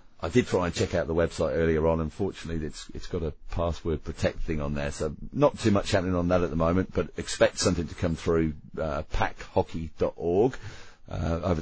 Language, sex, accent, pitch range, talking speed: English, male, British, 80-95 Hz, 215 wpm